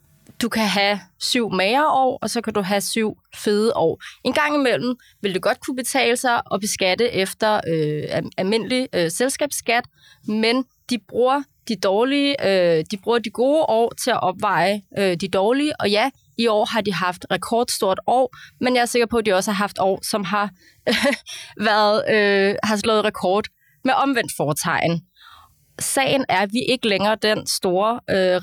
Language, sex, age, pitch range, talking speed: Danish, female, 20-39, 190-240 Hz, 185 wpm